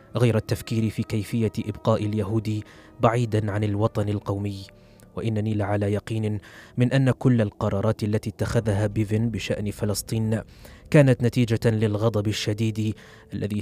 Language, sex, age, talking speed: Arabic, male, 20-39, 120 wpm